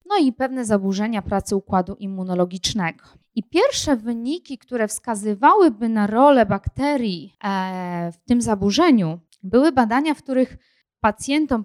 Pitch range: 190-255 Hz